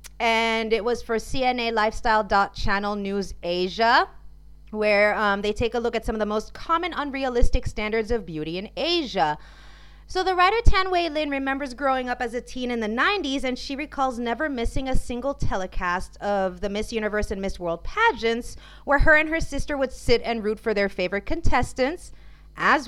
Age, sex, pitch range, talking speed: 30-49, female, 215-285 Hz, 185 wpm